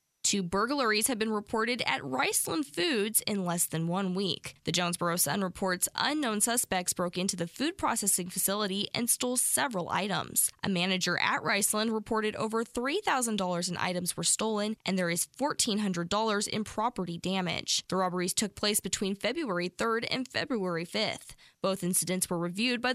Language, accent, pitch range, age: English, American, 180-230 Hz, 10-29